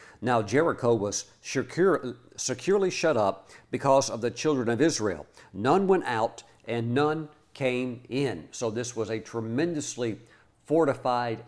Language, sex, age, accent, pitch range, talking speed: English, male, 50-69, American, 115-140 Hz, 130 wpm